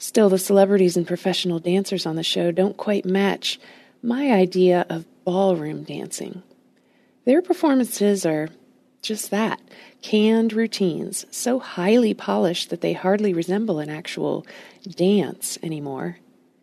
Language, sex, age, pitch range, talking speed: English, female, 40-59, 175-215 Hz, 125 wpm